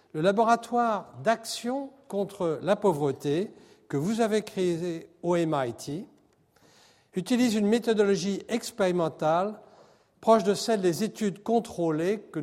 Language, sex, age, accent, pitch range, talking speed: French, male, 60-79, French, 150-200 Hz, 110 wpm